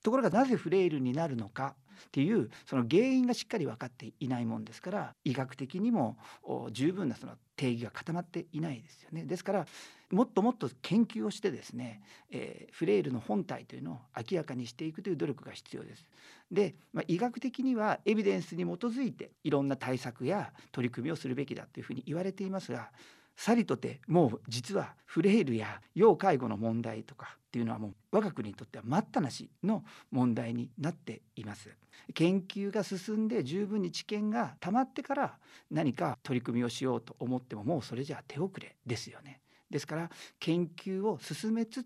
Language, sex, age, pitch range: Japanese, male, 40-59, 125-200 Hz